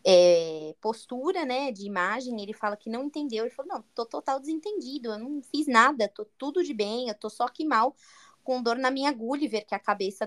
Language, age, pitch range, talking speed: Portuguese, 20-39, 225-310 Hz, 220 wpm